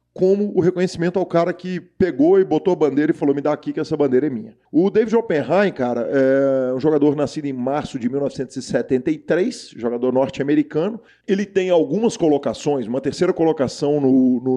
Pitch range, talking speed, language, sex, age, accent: 130-170 Hz, 180 wpm, Portuguese, male, 40-59, Brazilian